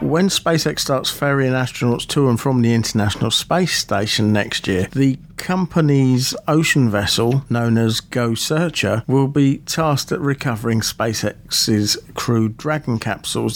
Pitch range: 115-140 Hz